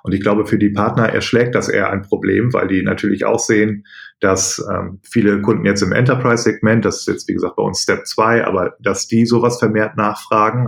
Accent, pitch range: German, 100-110 Hz